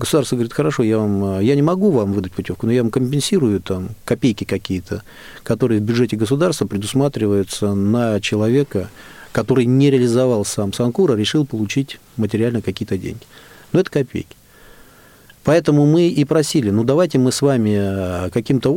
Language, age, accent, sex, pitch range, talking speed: Russian, 40-59, native, male, 110-145 Hz, 155 wpm